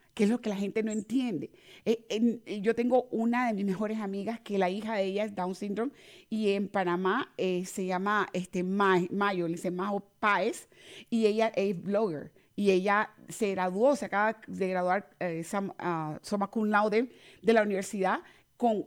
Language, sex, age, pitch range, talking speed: English, female, 30-49, 200-255 Hz, 175 wpm